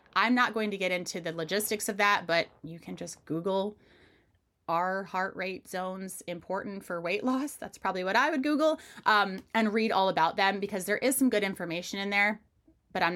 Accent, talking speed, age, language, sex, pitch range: American, 205 wpm, 30-49, English, female, 175-220 Hz